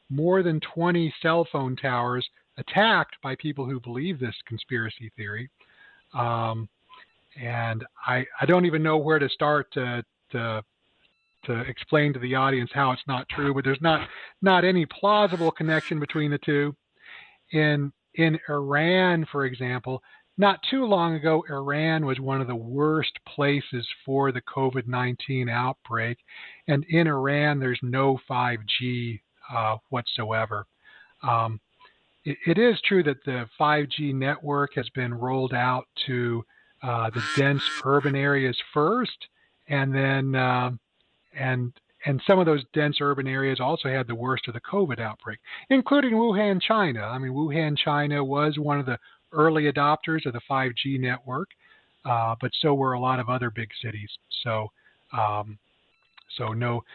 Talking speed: 150 wpm